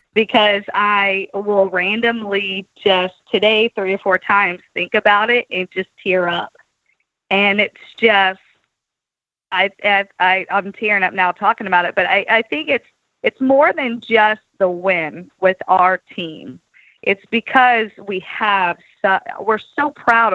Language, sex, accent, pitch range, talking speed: English, female, American, 185-230 Hz, 155 wpm